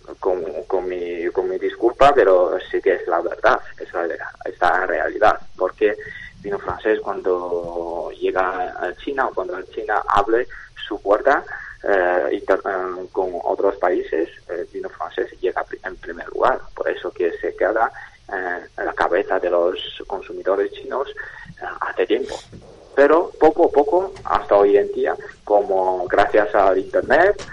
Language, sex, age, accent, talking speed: Spanish, male, 20-39, Spanish, 155 wpm